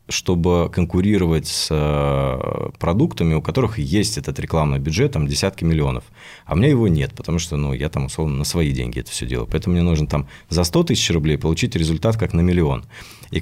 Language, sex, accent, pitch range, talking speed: Russian, male, native, 75-90 Hz, 195 wpm